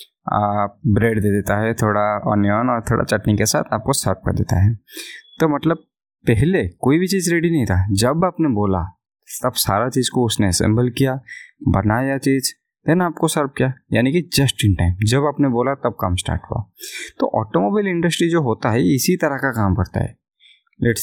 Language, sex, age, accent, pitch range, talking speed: Hindi, male, 20-39, native, 110-145 Hz, 195 wpm